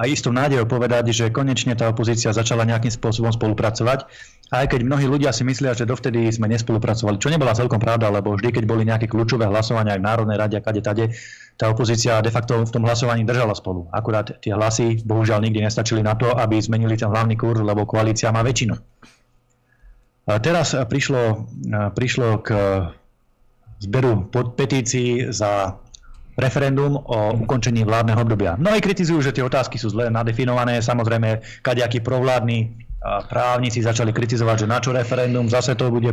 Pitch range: 115-130 Hz